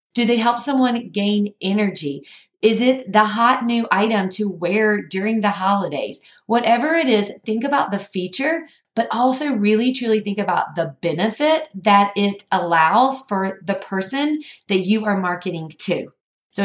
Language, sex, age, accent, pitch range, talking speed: English, female, 30-49, American, 195-250 Hz, 160 wpm